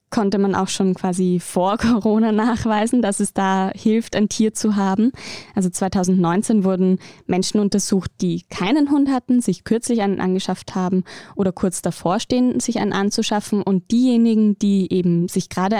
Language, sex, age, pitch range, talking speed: German, female, 10-29, 180-215 Hz, 165 wpm